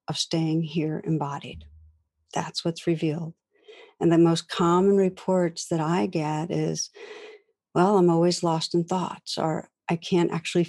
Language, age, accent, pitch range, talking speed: English, 60-79, American, 160-185 Hz, 140 wpm